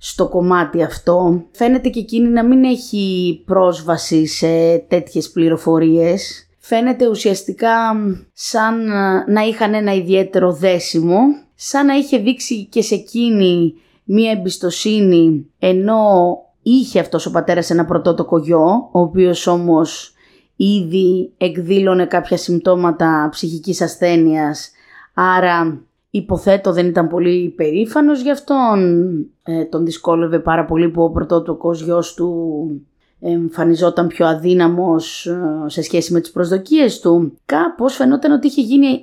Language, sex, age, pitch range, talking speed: Greek, female, 20-39, 170-230 Hz, 120 wpm